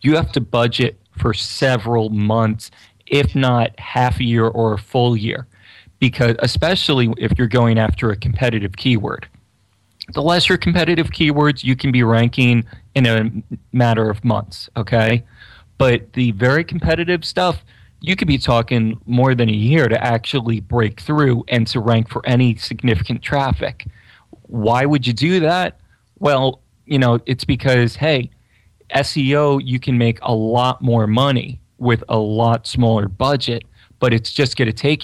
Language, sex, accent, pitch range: English, male, American, 115-130 Hz